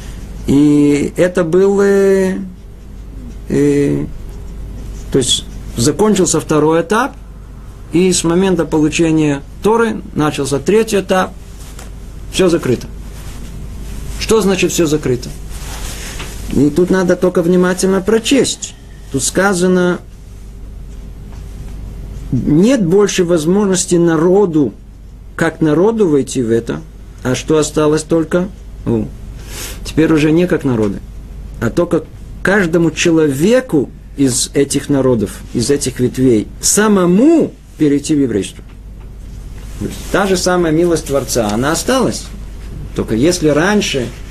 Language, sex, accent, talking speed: Russian, male, native, 100 wpm